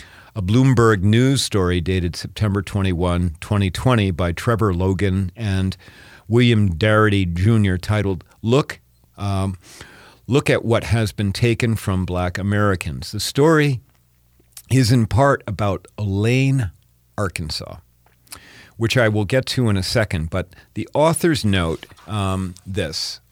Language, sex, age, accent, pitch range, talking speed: English, male, 50-69, American, 90-115 Hz, 125 wpm